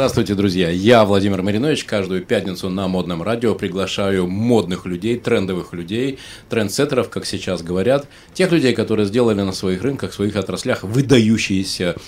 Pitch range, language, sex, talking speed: 95-125 Hz, Russian, male, 150 wpm